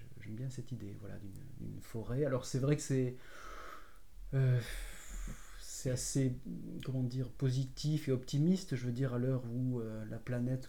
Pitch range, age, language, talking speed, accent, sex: 115-140 Hz, 30-49, French, 165 wpm, French, male